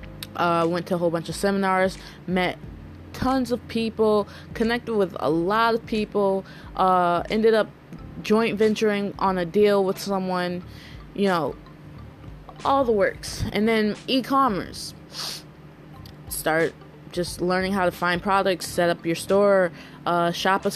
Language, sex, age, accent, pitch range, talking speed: English, female, 20-39, American, 170-215 Hz, 140 wpm